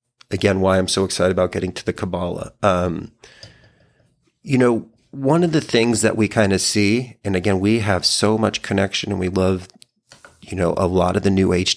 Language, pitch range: English, 90-115 Hz